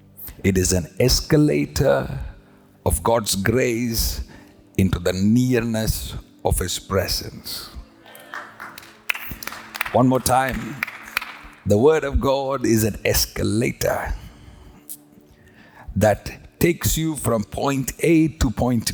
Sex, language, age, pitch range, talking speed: male, English, 50-69, 95-125 Hz, 100 wpm